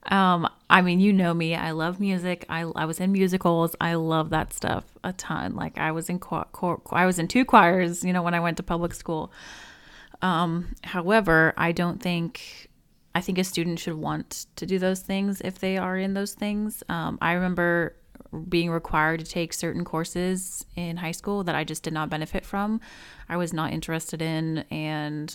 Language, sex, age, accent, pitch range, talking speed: English, female, 30-49, American, 160-185 Hz, 205 wpm